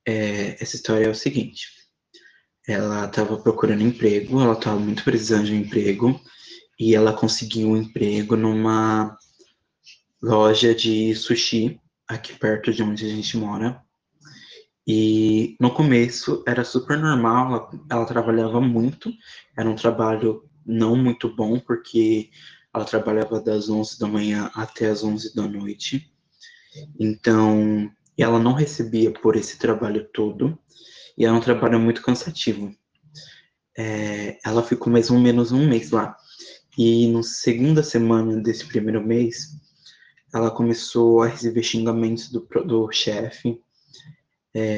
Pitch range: 110-125 Hz